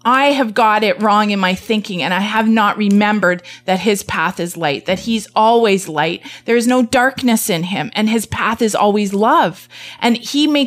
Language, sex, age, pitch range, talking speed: English, female, 30-49, 200-265 Hz, 210 wpm